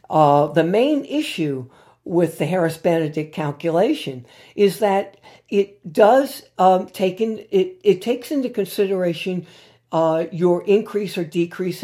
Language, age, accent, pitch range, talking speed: English, 60-79, American, 155-205 Hz, 130 wpm